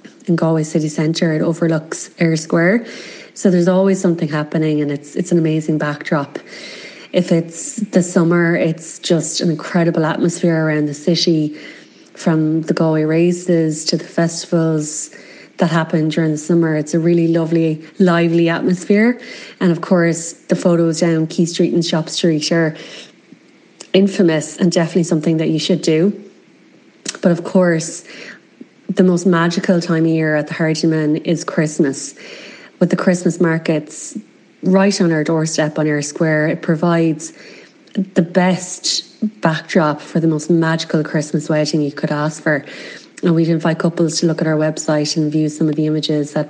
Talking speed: 160 wpm